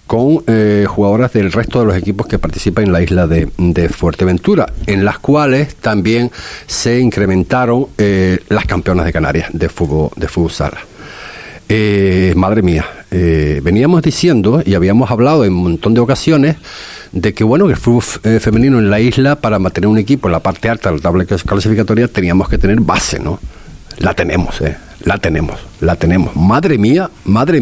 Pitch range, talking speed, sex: 85-115 Hz, 175 wpm, male